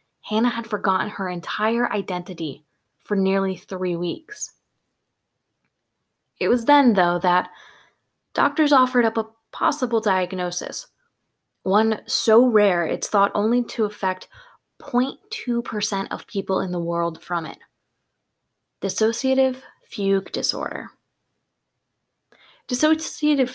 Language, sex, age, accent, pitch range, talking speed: English, female, 20-39, American, 185-235 Hz, 105 wpm